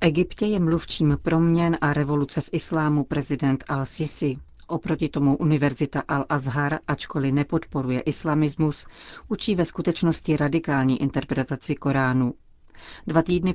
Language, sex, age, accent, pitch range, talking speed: Czech, female, 40-59, native, 140-160 Hz, 110 wpm